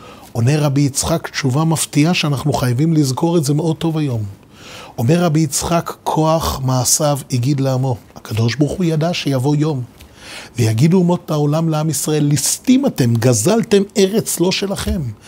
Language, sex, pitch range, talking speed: Hebrew, male, 140-210 Hz, 145 wpm